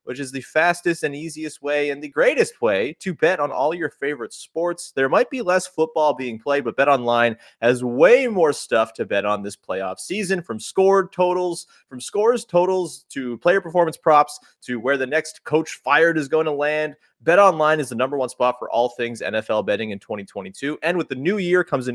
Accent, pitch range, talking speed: American, 125-165 Hz, 215 wpm